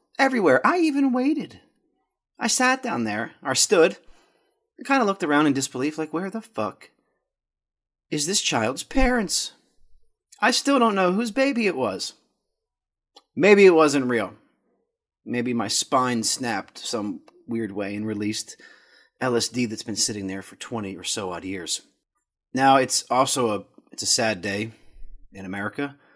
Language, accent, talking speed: English, American, 150 wpm